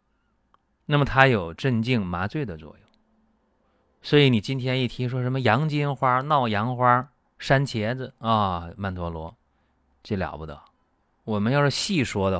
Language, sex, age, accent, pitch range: Chinese, male, 30-49, native, 85-125 Hz